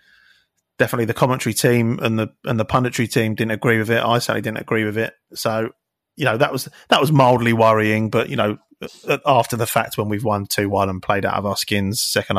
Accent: British